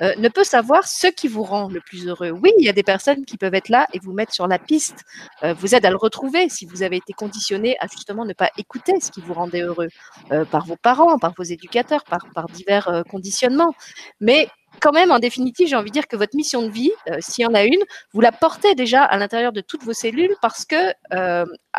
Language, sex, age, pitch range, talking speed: French, female, 40-59, 190-280 Hz, 255 wpm